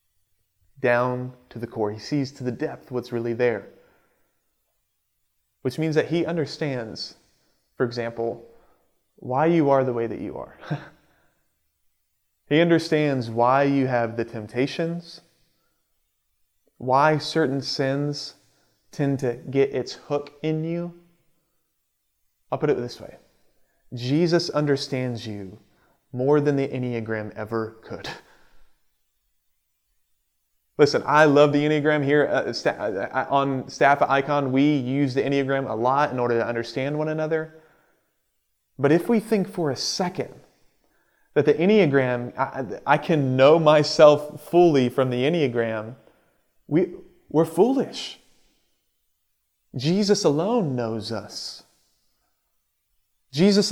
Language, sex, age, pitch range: English, male, 30-49, 115-155 Hz